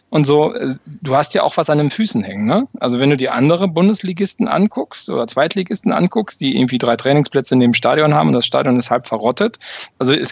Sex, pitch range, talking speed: male, 130-160 Hz, 220 wpm